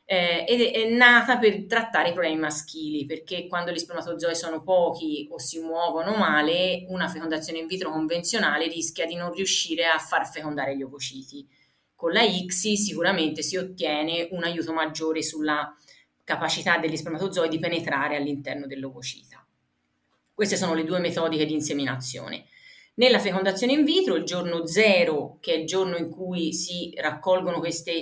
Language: Italian